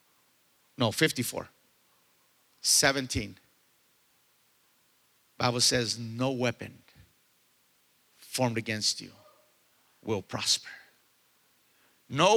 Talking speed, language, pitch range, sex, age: 65 wpm, English, 155-215 Hz, male, 50-69